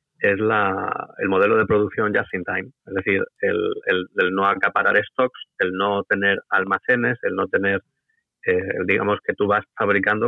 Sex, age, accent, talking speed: male, 30-49, Spanish, 180 wpm